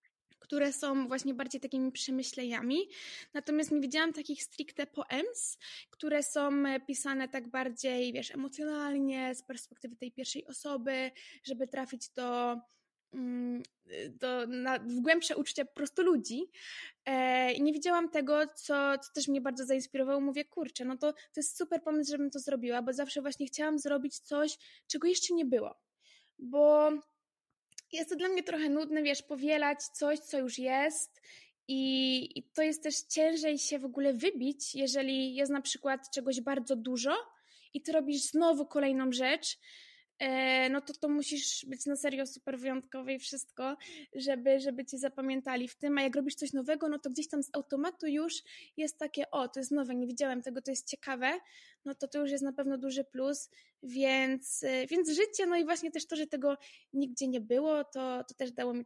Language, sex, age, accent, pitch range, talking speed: Polish, female, 20-39, native, 260-300 Hz, 175 wpm